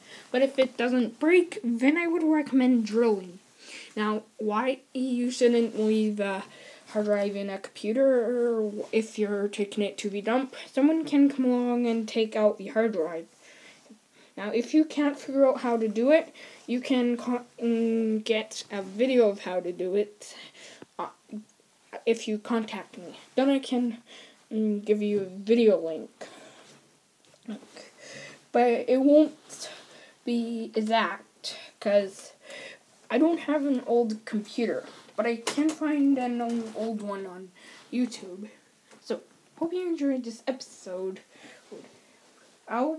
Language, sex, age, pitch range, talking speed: English, female, 10-29, 215-260 Hz, 140 wpm